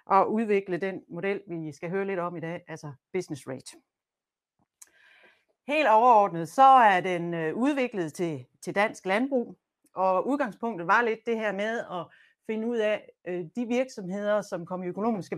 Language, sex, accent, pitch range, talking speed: Danish, female, native, 165-225 Hz, 155 wpm